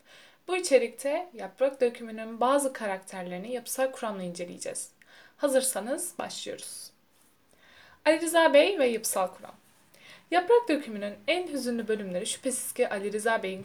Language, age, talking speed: Turkish, 10-29, 120 wpm